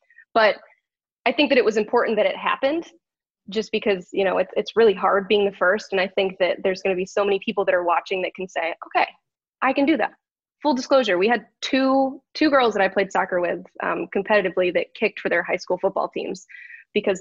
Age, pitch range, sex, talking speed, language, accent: 20-39, 190-235 Hz, female, 230 wpm, English, American